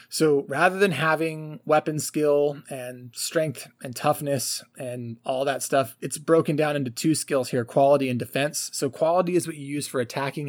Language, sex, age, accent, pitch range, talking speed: English, male, 20-39, American, 130-155 Hz, 185 wpm